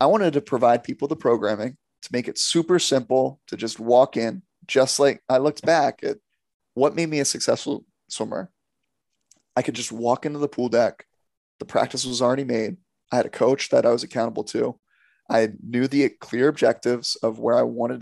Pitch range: 115-135 Hz